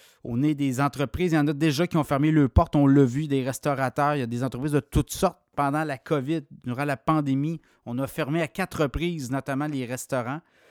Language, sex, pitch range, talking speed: French, male, 130-160 Hz, 235 wpm